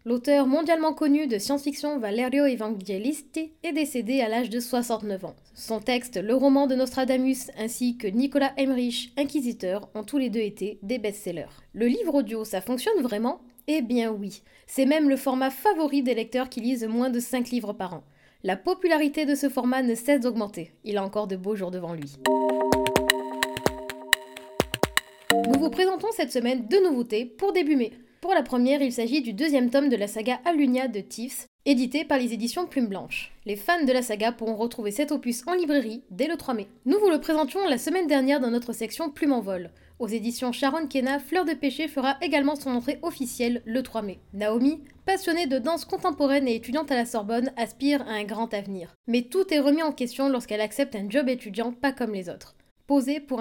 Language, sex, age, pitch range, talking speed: French, female, 20-39, 225-285 Hz, 200 wpm